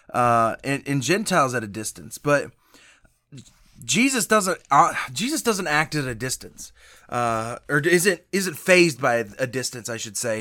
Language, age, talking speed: English, 20-39, 165 wpm